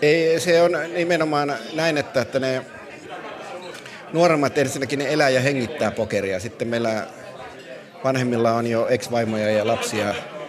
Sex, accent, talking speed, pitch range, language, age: male, native, 130 wpm, 115-140 Hz, Finnish, 30-49